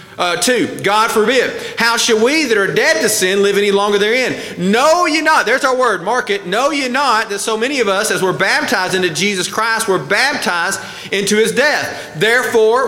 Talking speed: 205 wpm